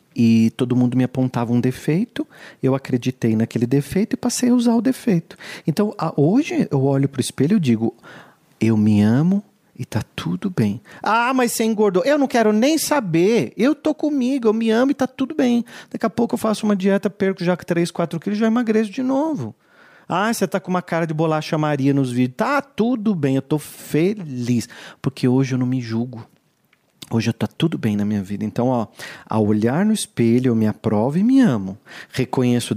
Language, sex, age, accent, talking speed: Portuguese, male, 40-59, Brazilian, 205 wpm